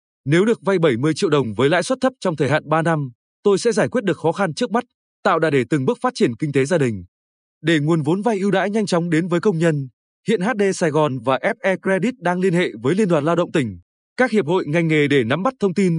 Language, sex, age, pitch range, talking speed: Vietnamese, male, 20-39, 150-205 Hz, 275 wpm